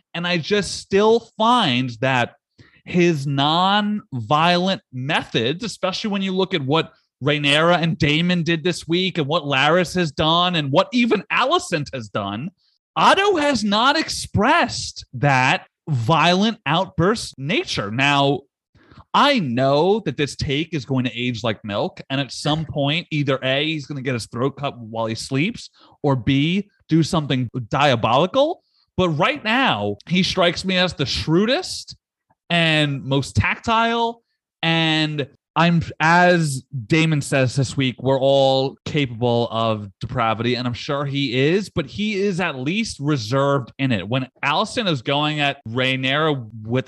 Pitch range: 135-180 Hz